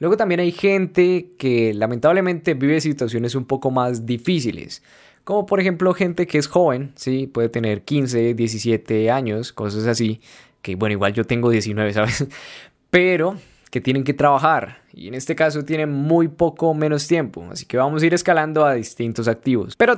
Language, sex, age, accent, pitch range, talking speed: Spanish, male, 10-29, Colombian, 130-185 Hz, 175 wpm